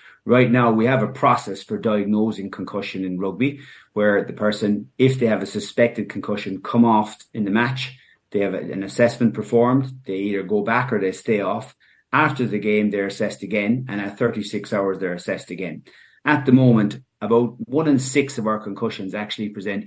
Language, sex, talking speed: English, male, 190 wpm